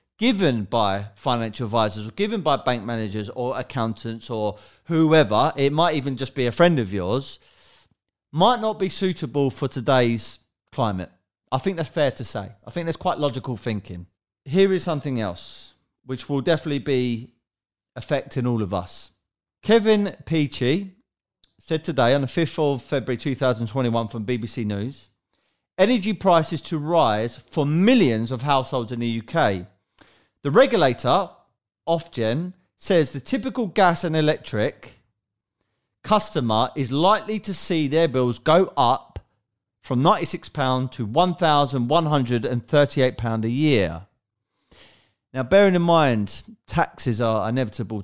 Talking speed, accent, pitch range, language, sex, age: 135 wpm, British, 115-160 Hz, English, male, 30-49